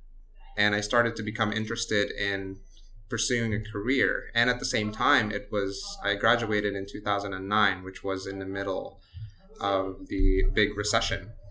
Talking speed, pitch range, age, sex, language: 155 wpm, 95-110 Hz, 20-39, male, English